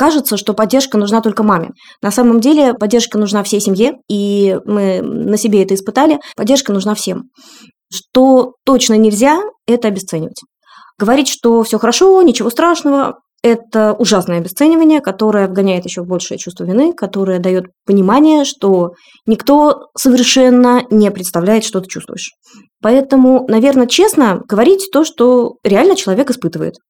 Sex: female